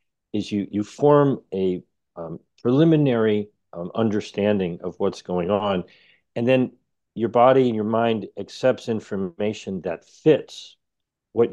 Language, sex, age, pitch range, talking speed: Danish, male, 50-69, 100-125 Hz, 130 wpm